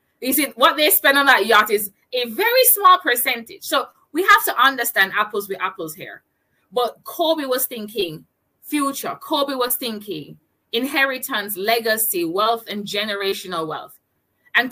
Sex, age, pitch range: female, 20-39, 215-295 Hz